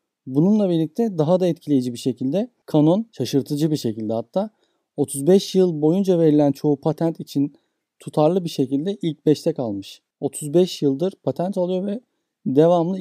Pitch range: 140-180 Hz